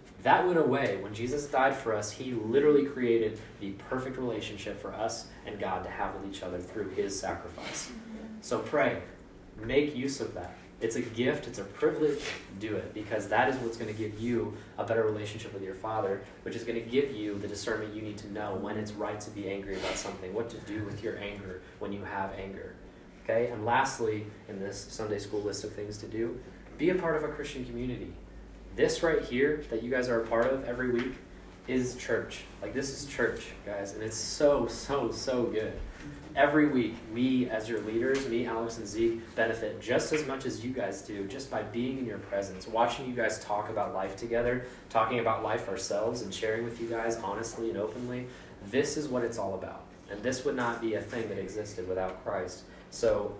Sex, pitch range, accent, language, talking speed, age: male, 100-125 Hz, American, English, 210 wpm, 20-39